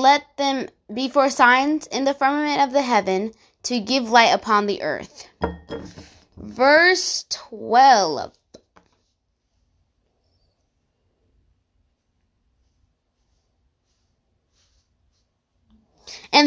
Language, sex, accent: English, female, American